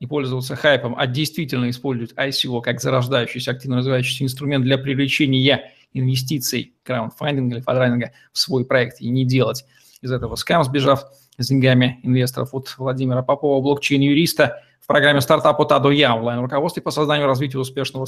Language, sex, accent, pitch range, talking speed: Russian, male, native, 130-145 Hz, 155 wpm